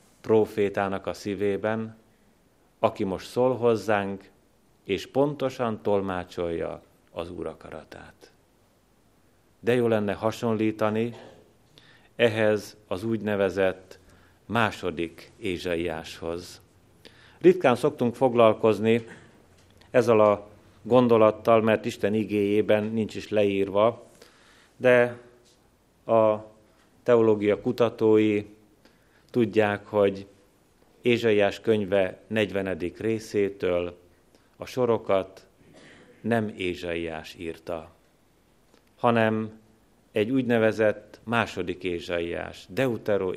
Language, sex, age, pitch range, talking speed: Hungarian, male, 30-49, 95-115 Hz, 75 wpm